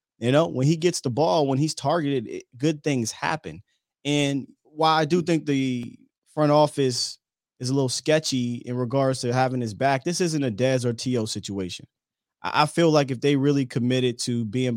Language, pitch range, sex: English, 115-145 Hz, male